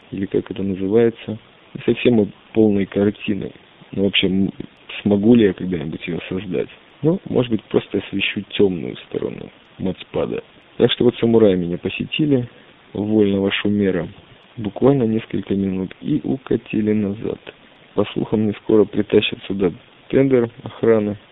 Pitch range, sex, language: 95-110 Hz, male, Russian